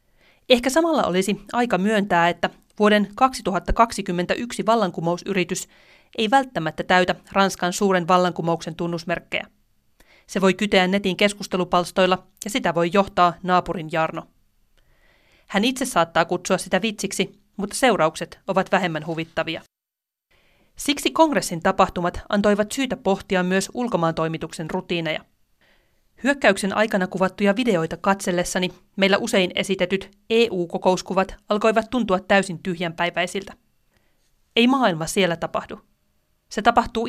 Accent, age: native, 30-49